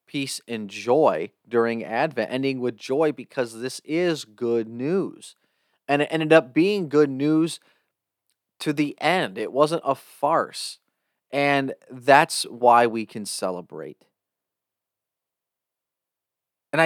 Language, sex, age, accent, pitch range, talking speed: English, male, 30-49, American, 130-165 Hz, 120 wpm